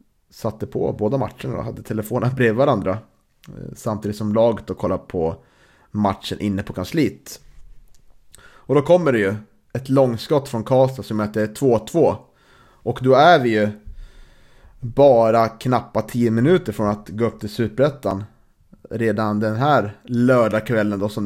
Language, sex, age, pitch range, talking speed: Swedish, male, 30-49, 105-125 Hz, 145 wpm